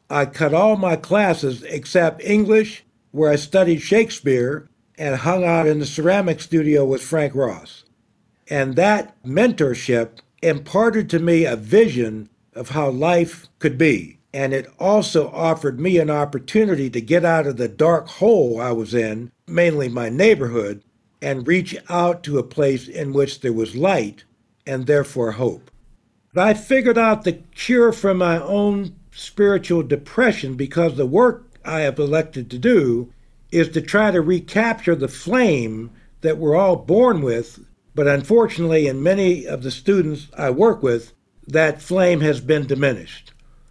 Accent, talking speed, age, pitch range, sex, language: American, 155 wpm, 60-79, 130-180 Hz, male, English